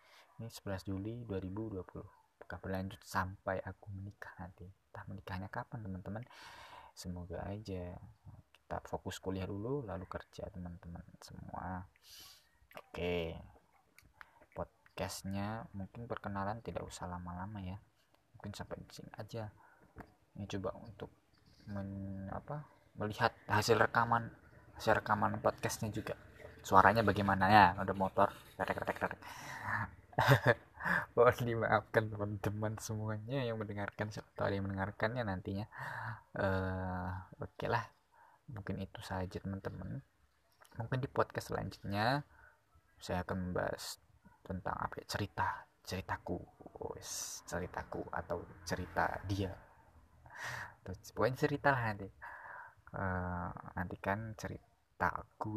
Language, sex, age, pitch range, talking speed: Indonesian, male, 20-39, 95-110 Hz, 105 wpm